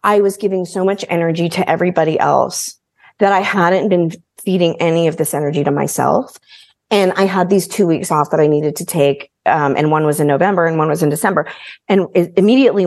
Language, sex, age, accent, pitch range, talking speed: English, female, 30-49, American, 155-205 Hz, 215 wpm